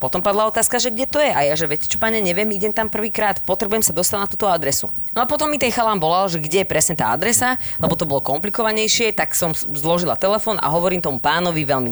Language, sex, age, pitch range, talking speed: Slovak, female, 20-39, 155-210 Hz, 245 wpm